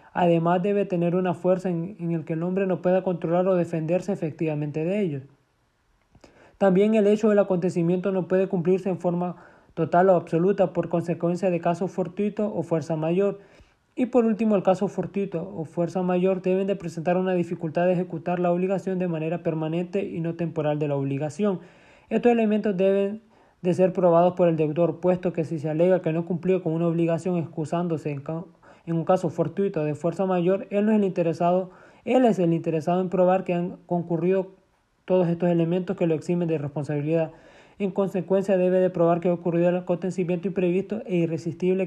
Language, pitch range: Spanish, 165-185 Hz